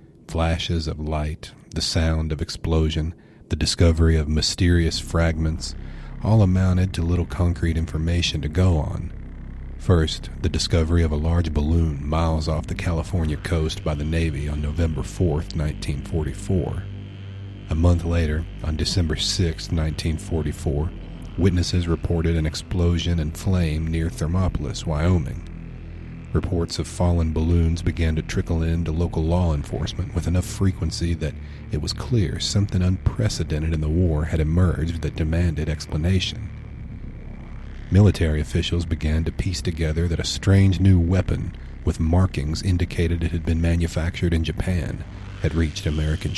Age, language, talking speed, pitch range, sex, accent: 40-59, English, 140 wpm, 80-90 Hz, male, American